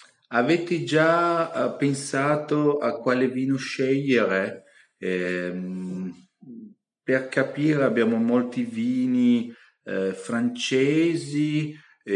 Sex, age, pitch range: male, 40-59, 95-145 Hz